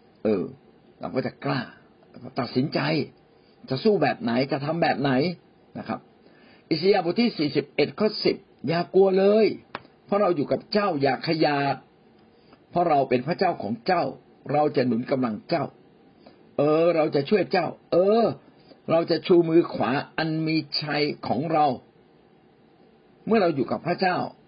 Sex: male